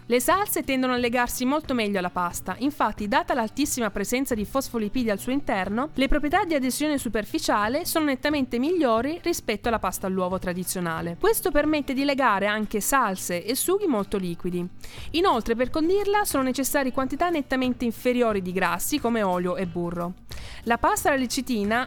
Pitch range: 215-305 Hz